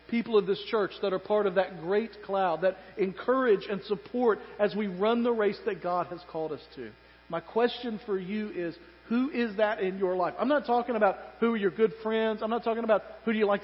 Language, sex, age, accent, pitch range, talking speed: English, male, 40-59, American, 150-220 Hz, 240 wpm